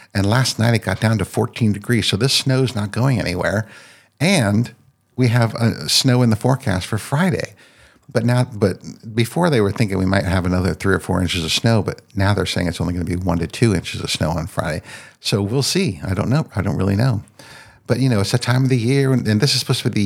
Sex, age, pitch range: male, 60-79, 95-120 Hz